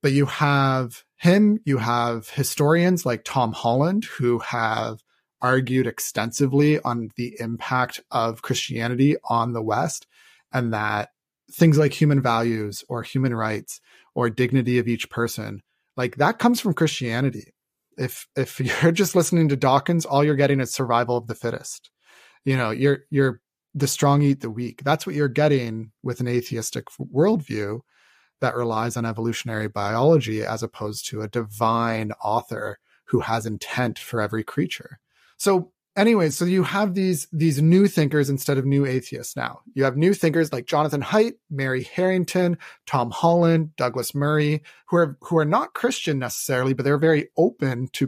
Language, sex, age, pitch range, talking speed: English, male, 30-49, 120-155 Hz, 160 wpm